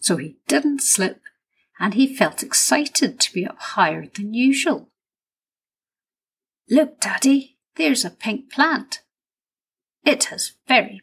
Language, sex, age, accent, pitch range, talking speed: English, female, 50-69, British, 185-270 Hz, 125 wpm